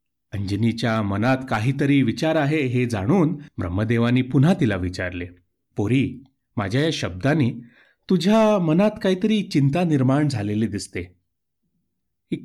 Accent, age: native, 30-49